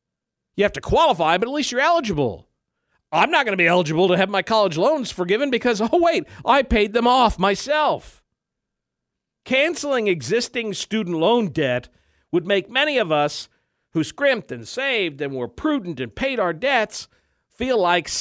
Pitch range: 175-255 Hz